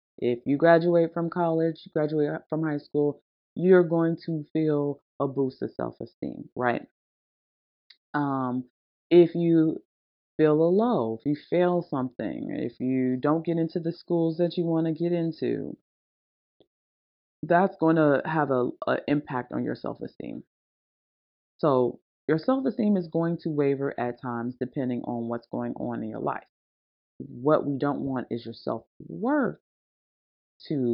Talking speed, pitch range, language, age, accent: 150 wpm, 120-165 Hz, English, 30-49, American